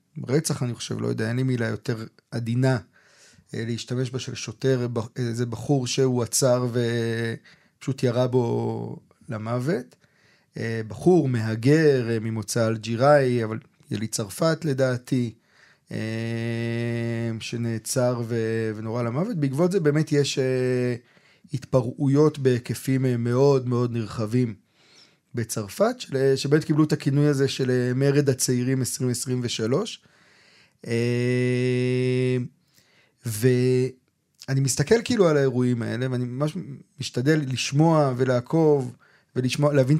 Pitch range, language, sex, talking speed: 120-145 Hz, Hebrew, male, 95 wpm